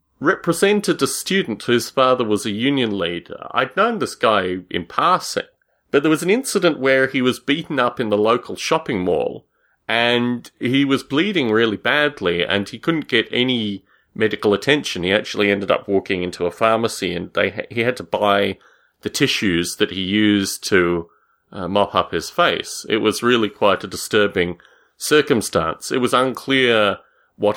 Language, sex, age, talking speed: English, male, 30-49, 175 wpm